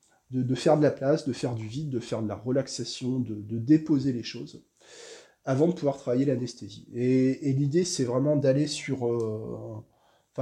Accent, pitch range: French, 115-145 Hz